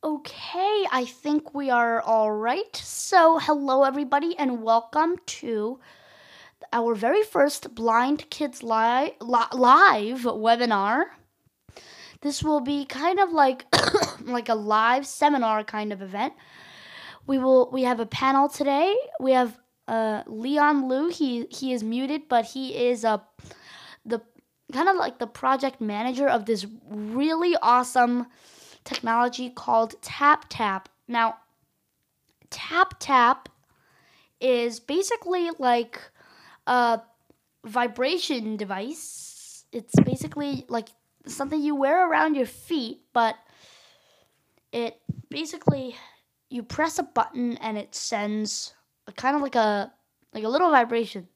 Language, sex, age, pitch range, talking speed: English, female, 10-29, 230-285 Hz, 125 wpm